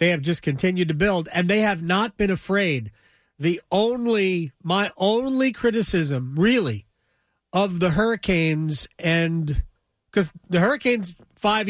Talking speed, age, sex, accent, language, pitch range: 135 wpm, 40-59, male, American, English, 150-205 Hz